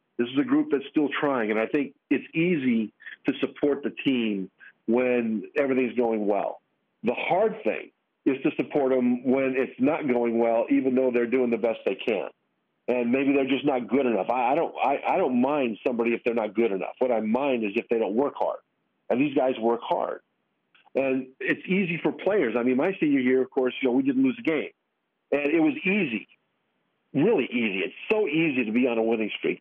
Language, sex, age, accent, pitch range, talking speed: English, male, 50-69, American, 120-150 Hz, 220 wpm